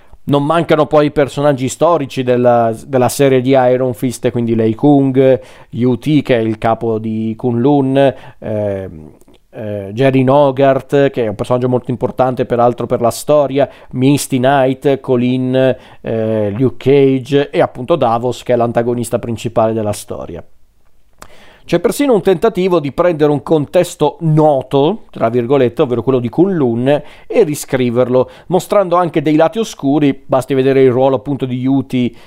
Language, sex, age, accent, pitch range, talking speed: Italian, male, 40-59, native, 125-150 Hz, 150 wpm